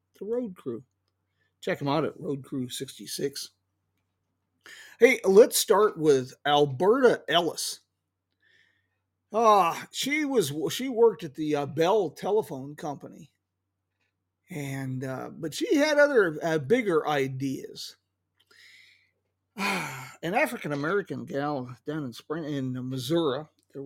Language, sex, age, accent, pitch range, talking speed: English, male, 50-69, American, 125-195 Hz, 115 wpm